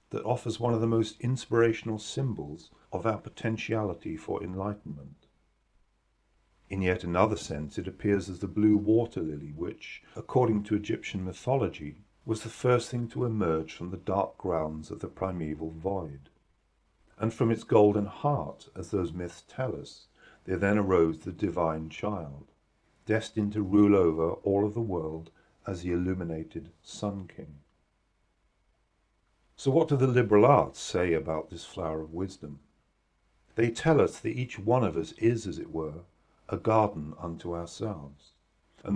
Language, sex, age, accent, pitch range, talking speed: English, male, 50-69, British, 80-105 Hz, 155 wpm